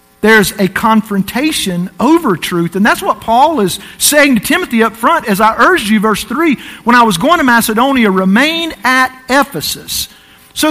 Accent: American